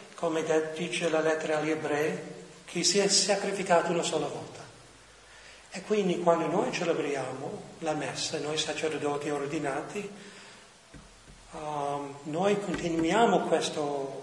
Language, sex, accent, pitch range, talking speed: Italian, male, native, 150-185 Hz, 115 wpm